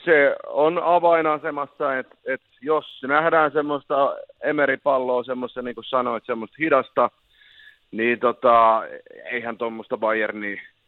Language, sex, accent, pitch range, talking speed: Finnish, male, native, 125-165 Hz, 110 wpm